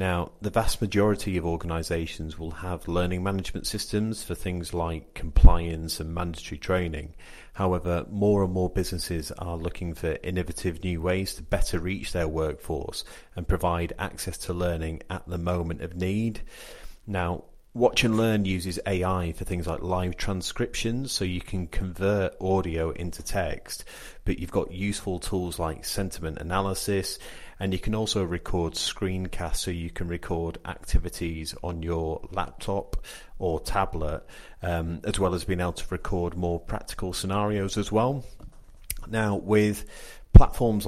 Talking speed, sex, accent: 150 wpm, male, British